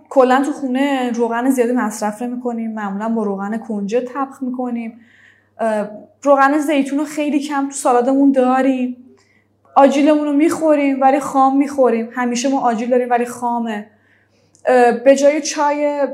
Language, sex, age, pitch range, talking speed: Persian, female, 10-29, 210-265 Hz, 140 wpm